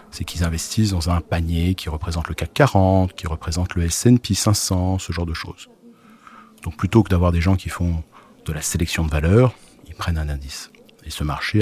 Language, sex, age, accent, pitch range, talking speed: French, male, 40-59, French, 85-125 Hz, 205 wpm